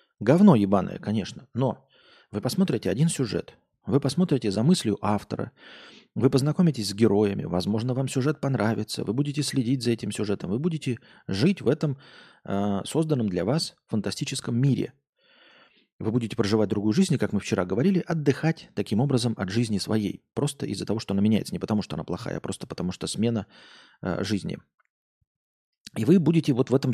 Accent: native